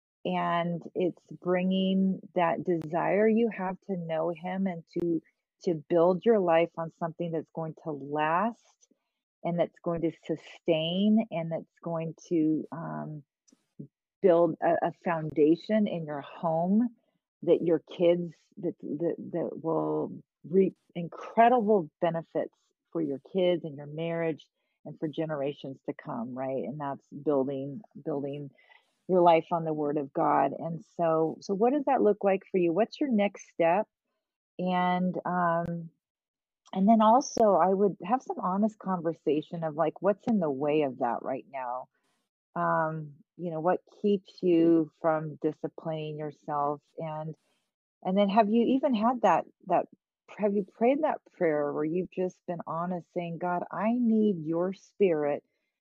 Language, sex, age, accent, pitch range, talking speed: English, female, 40-59, American, 160-195 Hz, 150 wpm